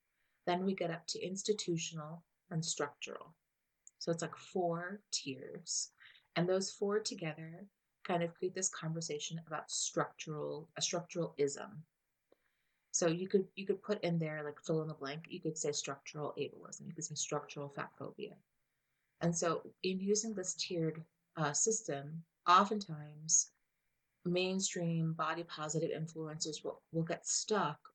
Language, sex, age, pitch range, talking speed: English, female, 30-49, 150-180 Hz, 145 wpm